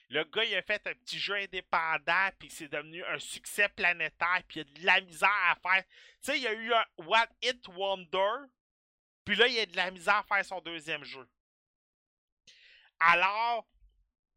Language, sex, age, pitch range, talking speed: French, male, 30-49, 175-230 Hz, 190 wpm